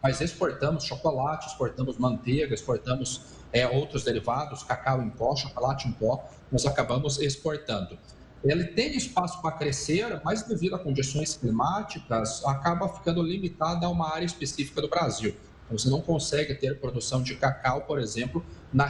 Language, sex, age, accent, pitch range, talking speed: Portuguese, male, 40-59, Brazilian, 125-160 Hz, 150 wpm